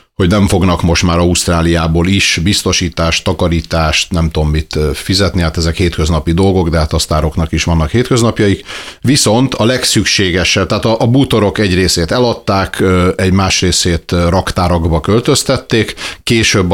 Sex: male